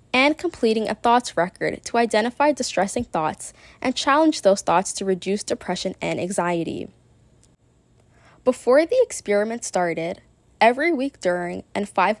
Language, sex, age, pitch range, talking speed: English, female, 10-29, 185-245 Hz, 135 wpm